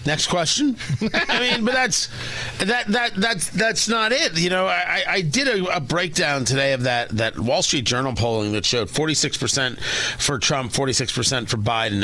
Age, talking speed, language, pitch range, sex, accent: 40-59, 200 wpm, English, 145-210 Hz, male, American